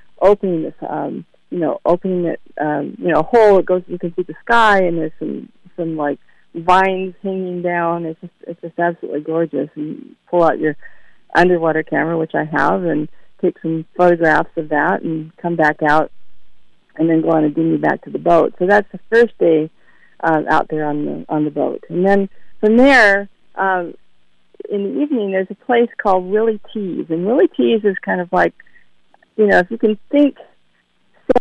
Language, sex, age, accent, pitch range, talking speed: English, female, 40-59, American, 155-200 Hz, 195 wpm